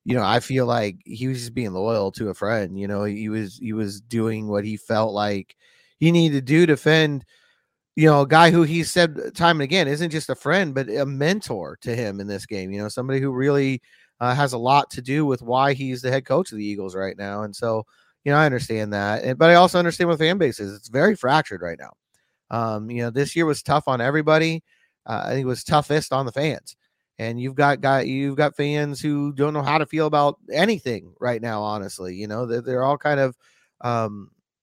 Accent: American